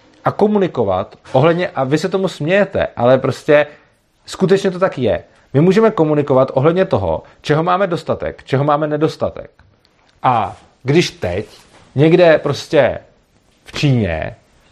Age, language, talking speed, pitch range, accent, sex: 30-49, Czech, 130 wpm, 120-165 Hz, native, male